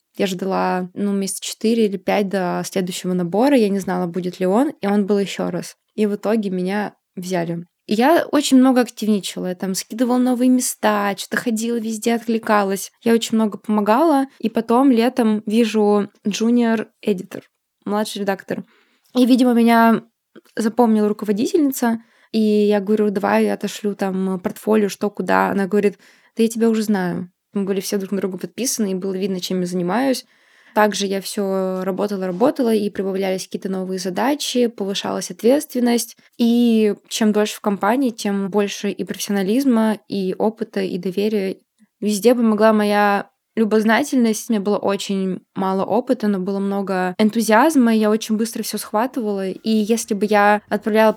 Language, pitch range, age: Russian, 195-230 Hz, 20-39